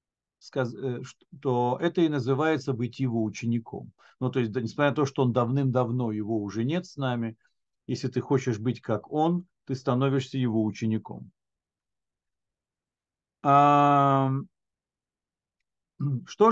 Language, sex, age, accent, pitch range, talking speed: Russian, male, 50-69, native, 120-155 Hz, 120 wpm